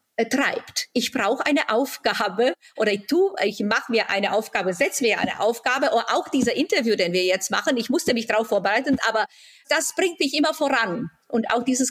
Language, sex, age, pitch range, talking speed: German, female, 50-69, 215-275 Hz, 195 wpm